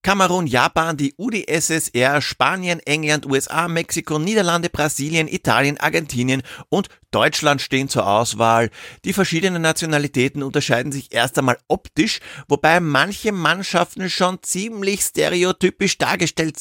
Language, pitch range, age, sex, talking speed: German, 120-160 Hz, 50-69, male, 115 wpm